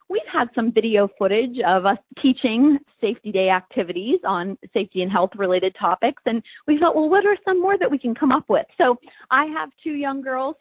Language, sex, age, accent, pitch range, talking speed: English, female, 30-49, American, 215-280 Hz, 210 wpm